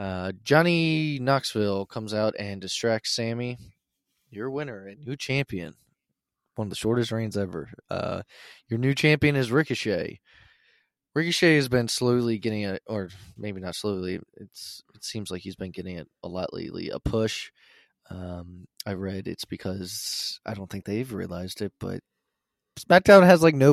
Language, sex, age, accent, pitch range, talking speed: English, male, 20-39, American, 95-130 Hz, 160 wpm